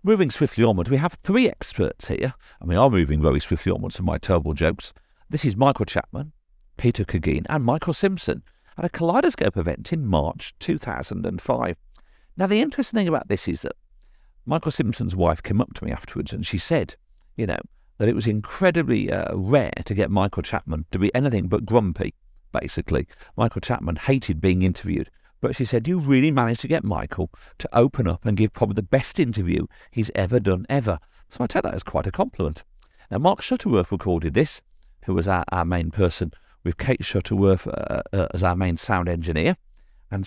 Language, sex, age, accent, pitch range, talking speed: English, male, 50-69, British, 90-135 Hz, 190 wpm